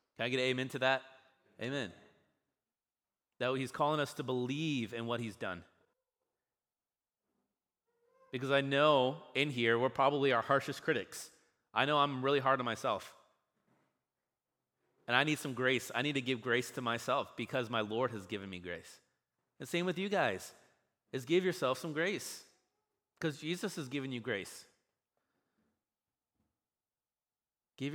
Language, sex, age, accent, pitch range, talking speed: English, male, 30-49, American, 105-140 Hz, 150 wpm